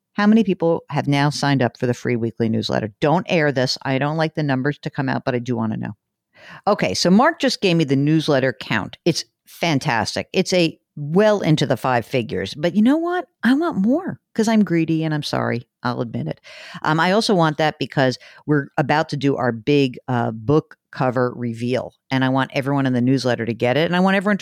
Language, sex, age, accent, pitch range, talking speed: English, female, 50-69, American, 135-195 Hz, 230 wpm